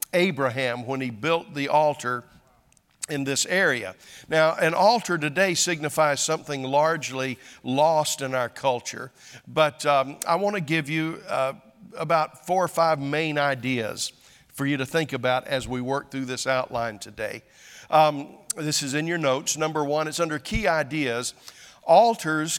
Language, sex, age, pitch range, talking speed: English, male, 50-69, 135-160 Hz, 155 wpm